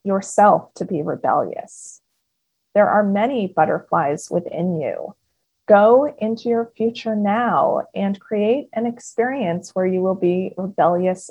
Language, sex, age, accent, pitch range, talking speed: English, female, 30-49, American, 185-230 Hz, 125 wpm